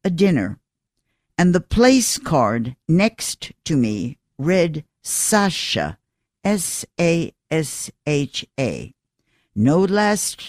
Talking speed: 80 wpm